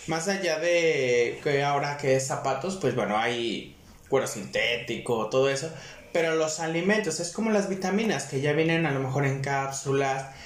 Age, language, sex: 30-49, Spanish, male